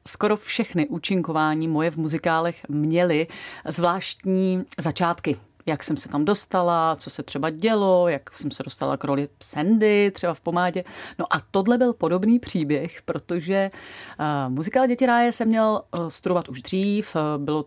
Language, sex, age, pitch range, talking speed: Czech, female, 30-49, 150-185 Hz, 150 wpm